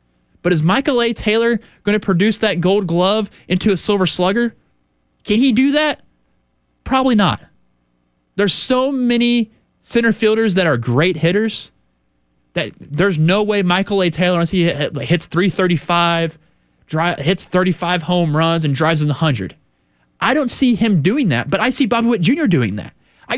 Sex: male